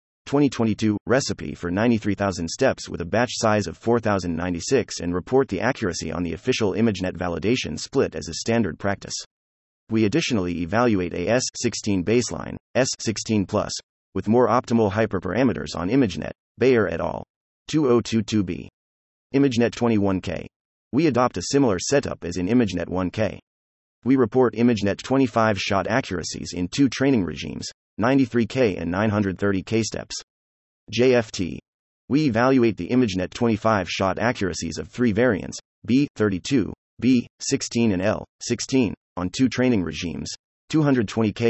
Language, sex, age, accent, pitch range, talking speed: English, male, 30-49, American, 90-120 Hz, 125 wpm